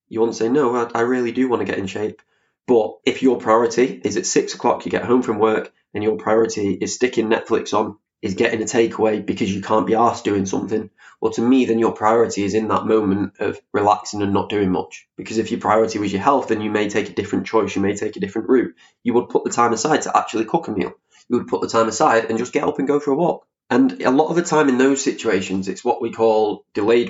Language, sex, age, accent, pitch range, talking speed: English, male, 20-39, British, 110-125 Hz, 270 wpm